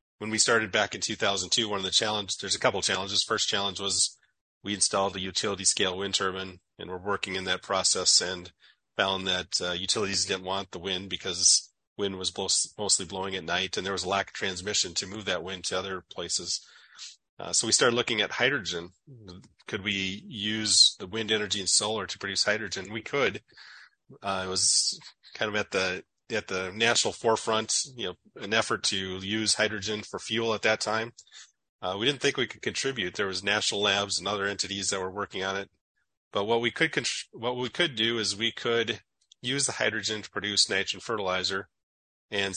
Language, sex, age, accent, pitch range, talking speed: English, male, 30-49, American, 95-110 Hz, 200 wpm